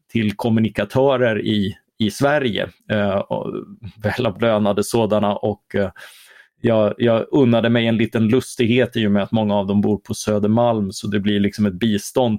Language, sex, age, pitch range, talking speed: Swedish, male, 30-49, 105-120 Hz, 165 wpm